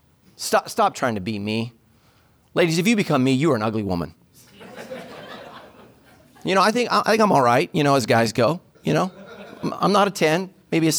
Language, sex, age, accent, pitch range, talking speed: English, male, 40-59, American, 115-185 Hz, 210 wpm